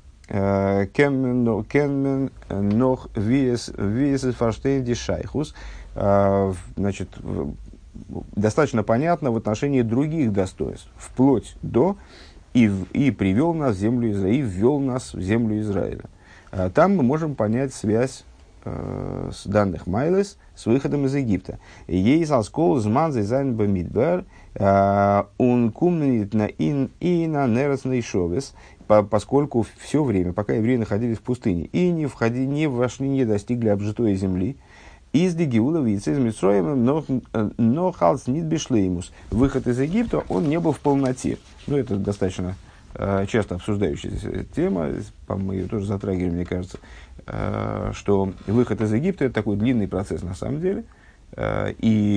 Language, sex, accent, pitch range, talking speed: Russian, male, native, 100-130 Hz, 120 wpm